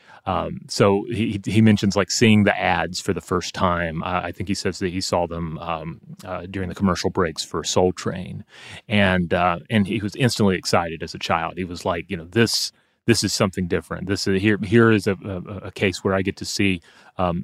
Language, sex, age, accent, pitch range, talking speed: English, male, 30-49, American, 95-110 Hz, 225 wpm